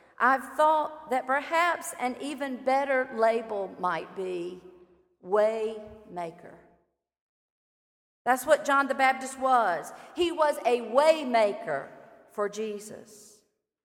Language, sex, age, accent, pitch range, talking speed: English, female, 40-59, American, 210-285 Hz, 100 wpm